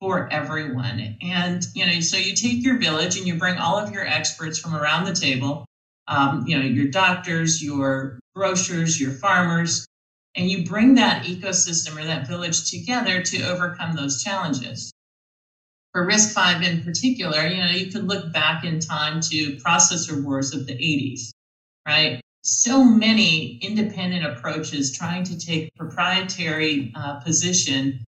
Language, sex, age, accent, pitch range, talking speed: English, male, 50-69, American, 150-190 Hz, 155 wpm